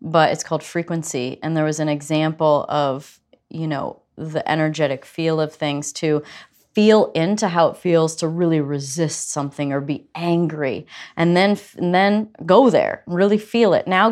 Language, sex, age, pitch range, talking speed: English, female, 30-49, 155-195 Hz, 170 wpm